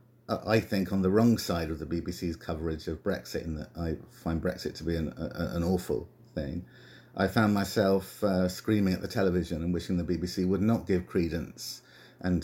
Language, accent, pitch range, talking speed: English, British, 85-100 Hz, 195 wpm